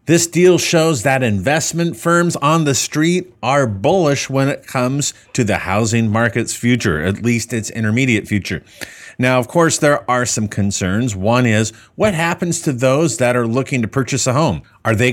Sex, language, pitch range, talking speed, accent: male, English, 110-150 Hz, 185 wpm, American